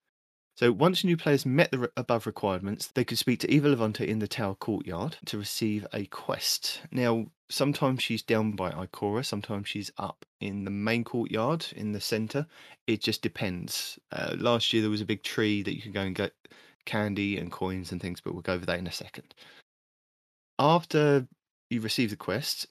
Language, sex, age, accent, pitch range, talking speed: English, male, 30-49, British, 105-130 Hz, 195 wpm